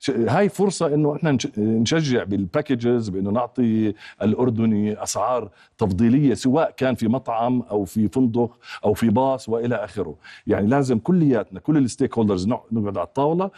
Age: 50-69